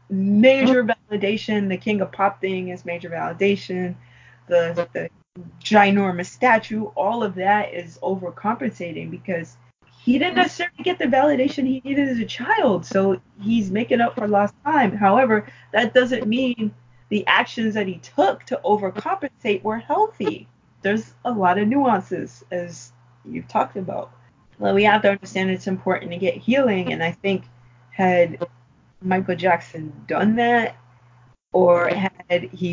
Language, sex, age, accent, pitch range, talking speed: English, female, 20-39, American, 170-220 Hz, 150 wpm